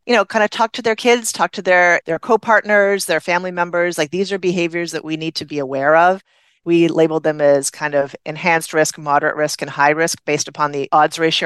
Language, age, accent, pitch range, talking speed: English, 40-59, American, 150-175 Hz, 235 wpm